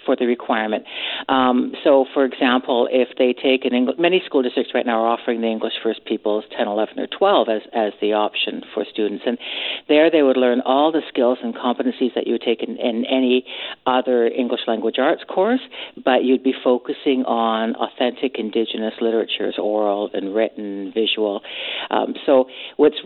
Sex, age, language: female, 60-79, English